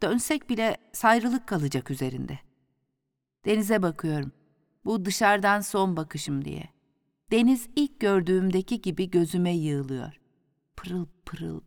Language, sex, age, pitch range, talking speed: Turkish, female, 50-69, 140-215 Hz, 105 wpm